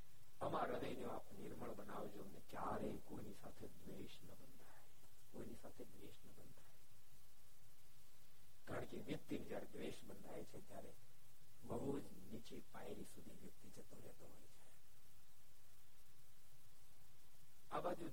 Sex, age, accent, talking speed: male, 60-79, native, 60 wpm